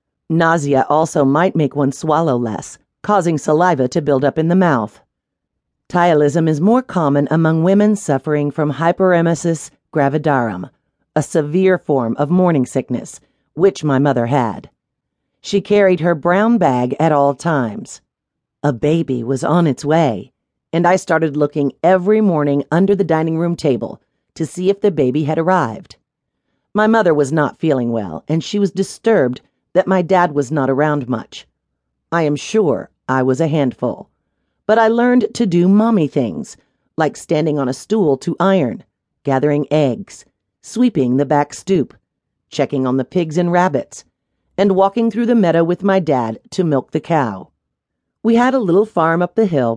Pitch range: 140-185 Hz